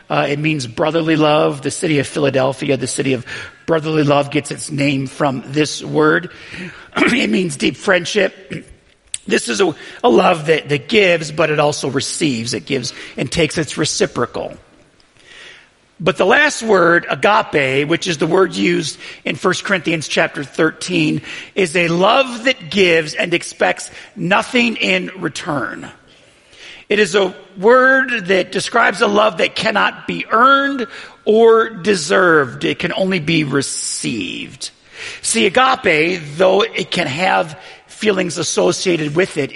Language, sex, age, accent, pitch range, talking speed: English, male, 40-59, American, 150-225 Hz, 145 wpm